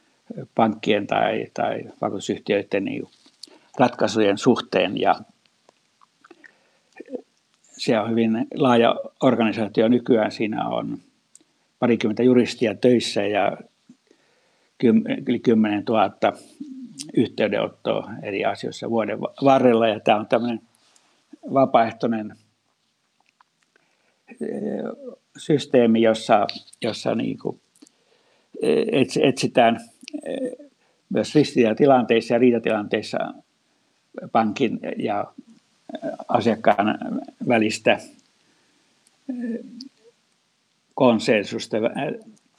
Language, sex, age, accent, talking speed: Finnish, male, 60-79, native, 65 wpm